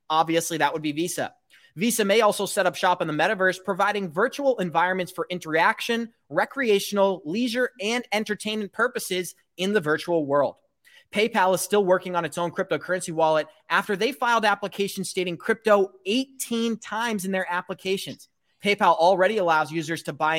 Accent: American